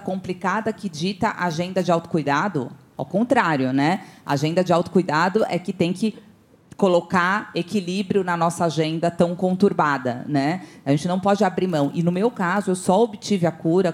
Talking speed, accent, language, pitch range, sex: 170 wpm, Brazilian, Portuguese, 140-170 Hz, female